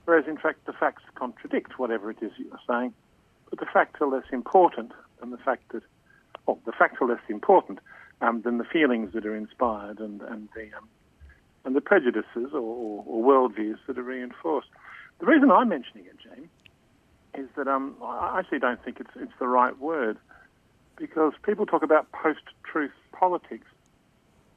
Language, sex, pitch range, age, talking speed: English, male, 125-180 Hz, 50-69, 175 wpm